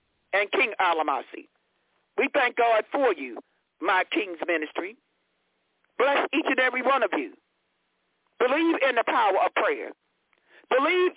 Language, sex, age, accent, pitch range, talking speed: English, male, 50-69, American, 230-360 Hz, 135 wpm